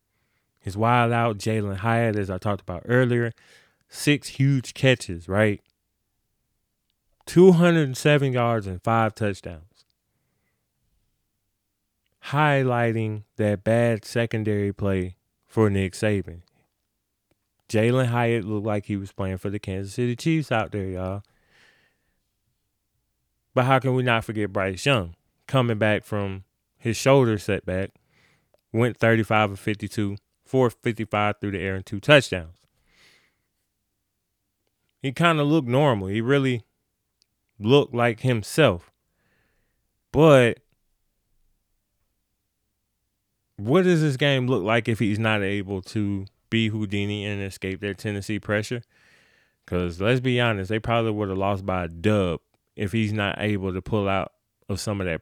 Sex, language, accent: male, English, American